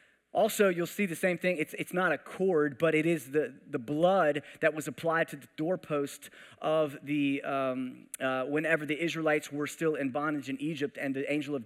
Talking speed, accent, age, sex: 205 wpm, American, 30-49, male